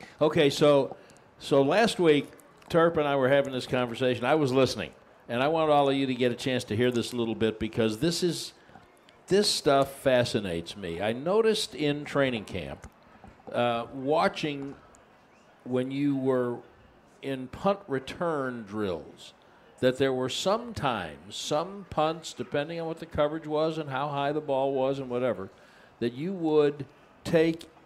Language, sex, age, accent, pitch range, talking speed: English, male, 60-79, American, 135-170 Hz, 165 wpm